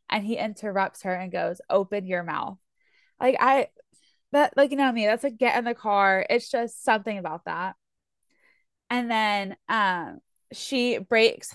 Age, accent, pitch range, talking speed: 20-39, American, 190-235 Hz, 165 wpm